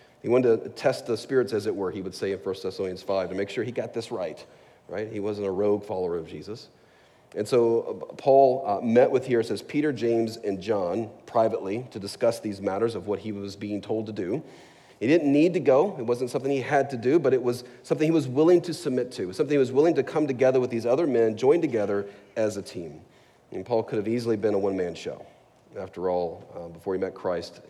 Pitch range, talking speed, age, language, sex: 100-130 Hz, 240 wpm, 40-59, English, male